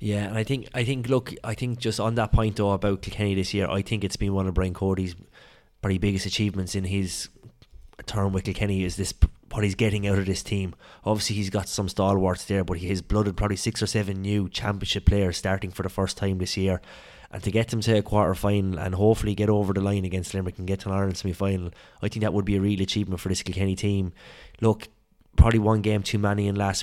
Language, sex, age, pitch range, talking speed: English, male, 20-39, 95-105 Hz, 250 wpm